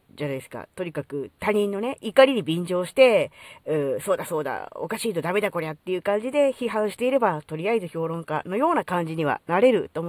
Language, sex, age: Japanese, female, 40-59